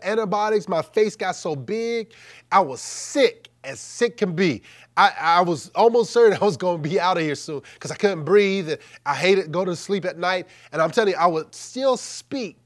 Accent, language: American, English